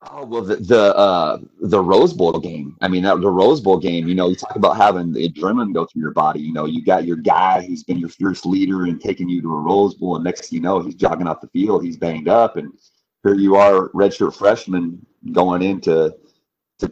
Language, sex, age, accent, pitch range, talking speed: English, male, 30-49, American, 85-100 Hz, 245 wpm